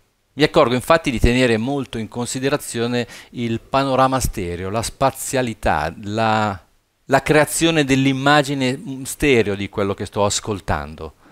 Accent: native